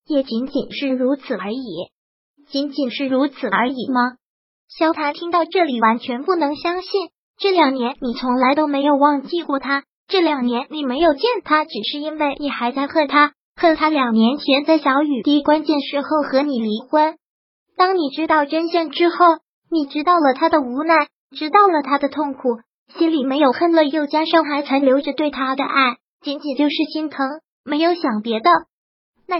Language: Chinese